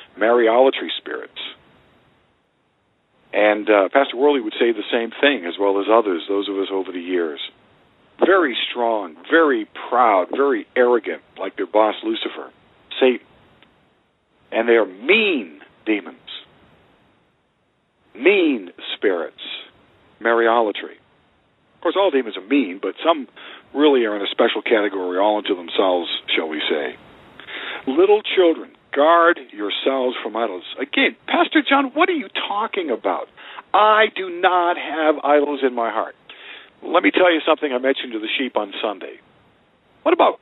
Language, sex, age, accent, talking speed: Finnish, male, 50-69, American, 145 wpm